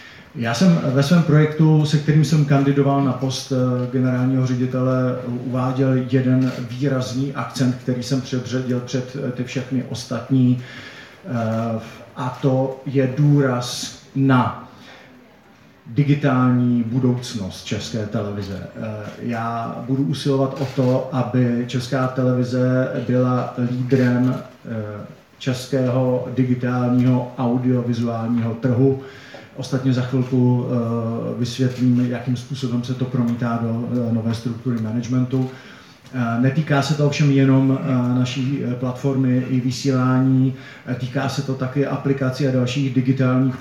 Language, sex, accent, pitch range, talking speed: Czech, male, native, 125-130 Hz, 105 wpm